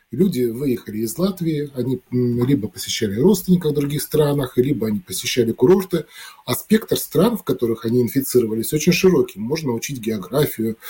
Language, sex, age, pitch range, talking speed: Russian, male, 20-39, 120-150 Hz, 150 wpm